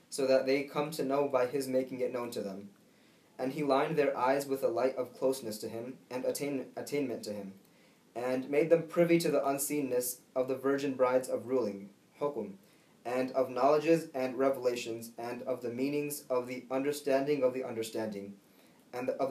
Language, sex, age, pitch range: English, male, 20-39, 125-145 Hz